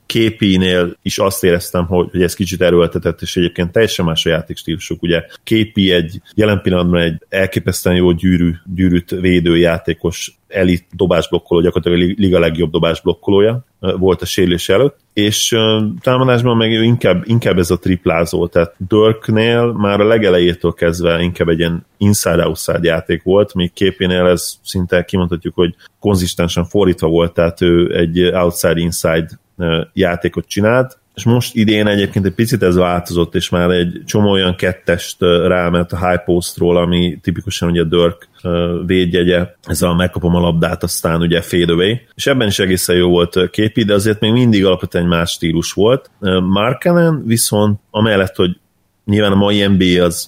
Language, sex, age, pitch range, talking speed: Hungarian, male, 30-49, 85-100 Hz, 150 wpm